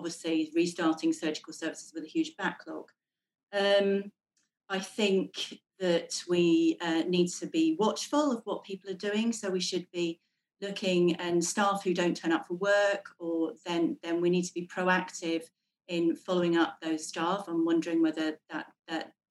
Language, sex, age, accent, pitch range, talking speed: English, female, 40-59, British, 165-205 Hz, 170 wpm